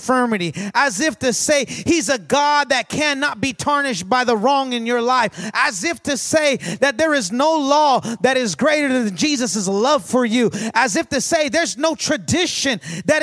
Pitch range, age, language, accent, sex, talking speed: 240-300 Hz, 30-49, English, American, male, 195 wpm